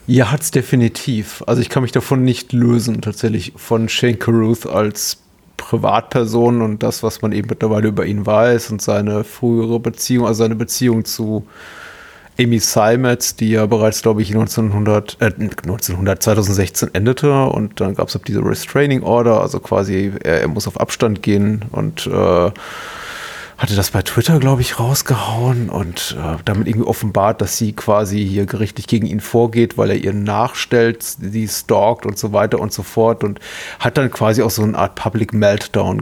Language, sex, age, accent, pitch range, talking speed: German, male, 30-49, German, 105-120 Hz, 175 wpm